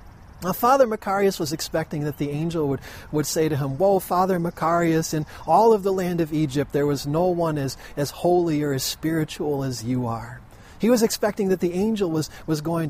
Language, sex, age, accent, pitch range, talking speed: English, male, 40-59, American, 140-185 Hz, 210 wpm